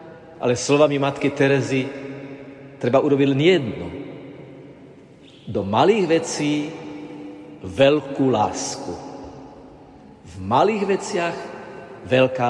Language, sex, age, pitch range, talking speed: Slovak, male, 50-69, 130-160 Hz, 80 wpm